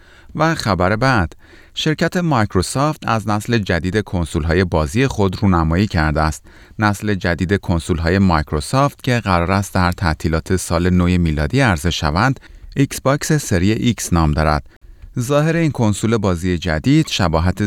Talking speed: 145 wpm